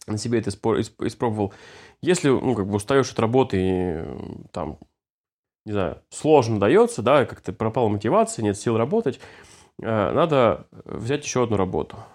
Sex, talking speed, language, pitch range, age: male, 160 wpm, Russian, 110-145 Hz, 20-39